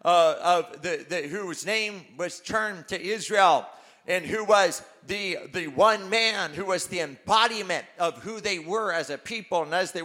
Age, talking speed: 40-59, 185 wpm